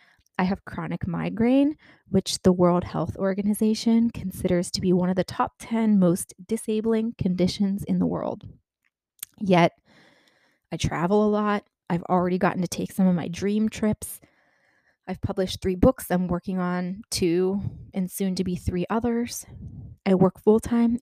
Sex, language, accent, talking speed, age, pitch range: female, English, American, 155 wpm, 20-39, 180-230 Hz